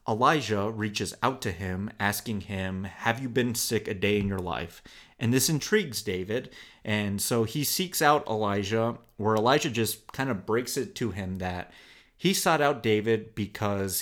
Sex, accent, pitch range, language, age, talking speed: male, American, 100-125 Hz, English, 30-49, 175 wpm